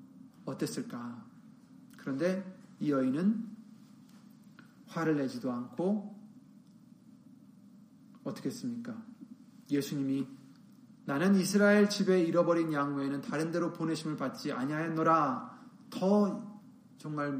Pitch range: 175-230 Hz